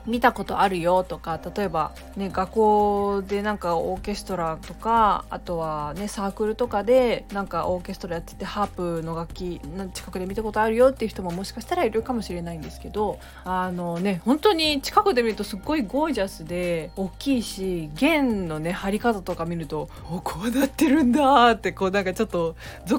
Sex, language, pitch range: female, Japanese, 175-235 Hz